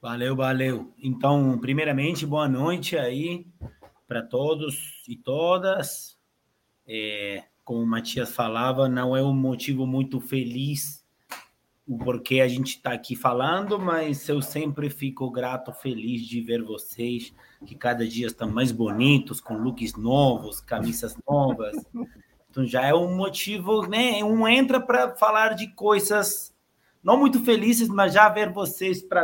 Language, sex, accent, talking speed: Portuguese, male, Brazilian, 140 wpm